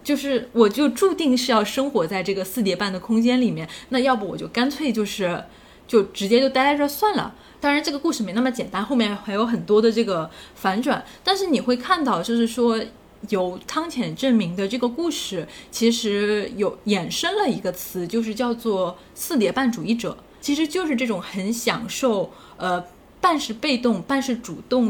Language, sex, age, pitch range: Chinese, female, 10-29, 200-260 Hz